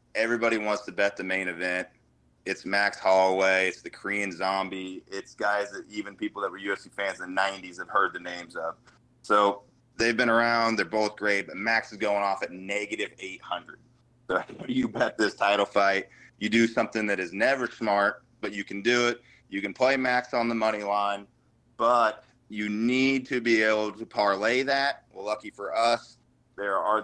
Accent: American